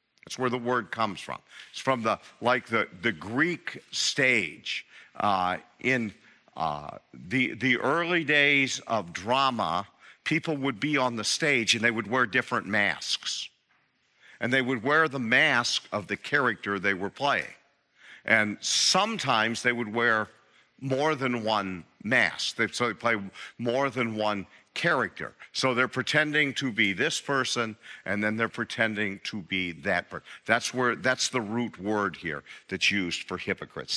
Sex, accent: male, American